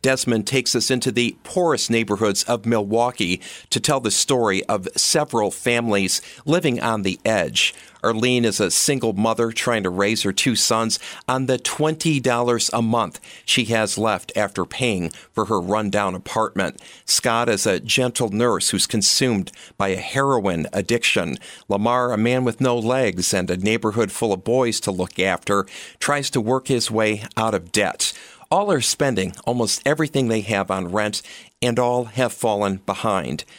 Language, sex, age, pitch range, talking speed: English, male, 50-69, 105-125 Hz, 165 wpm